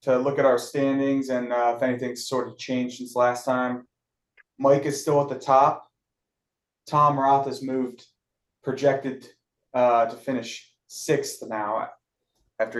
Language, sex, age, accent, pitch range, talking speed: English, male, 20-39, American, 115-130 Hz, 150 wpm